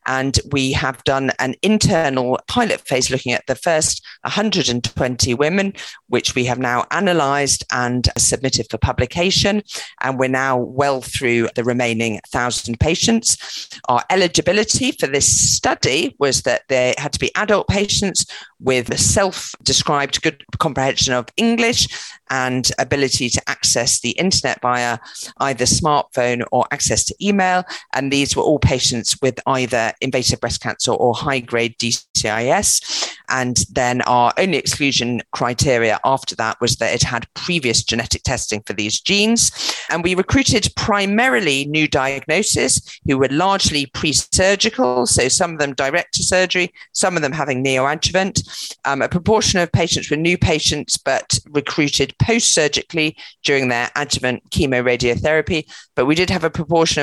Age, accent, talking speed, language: 40-59, British, 150 wpm, English